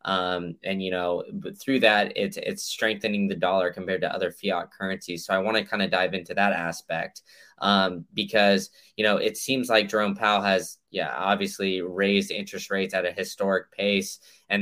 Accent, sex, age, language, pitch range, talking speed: American, male, 20-39, English, 95-110 Hz, 190 wpm